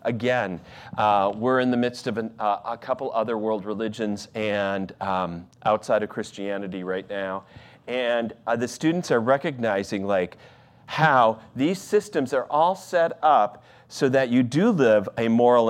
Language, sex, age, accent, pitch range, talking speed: English, male, 40-59, American, 110-150 Hz, 155 wpm